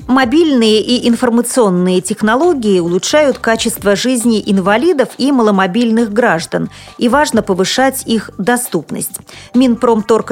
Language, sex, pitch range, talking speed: Russian, female, 185-240 Hz, 100 wpm